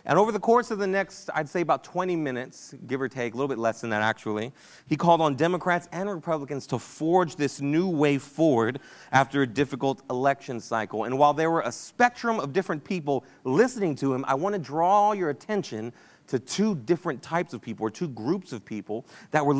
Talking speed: 215 wpm